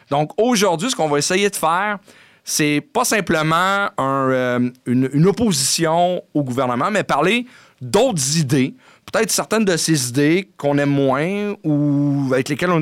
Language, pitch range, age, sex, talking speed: English, 130-175 Hz, 40-59, male, 160 wpm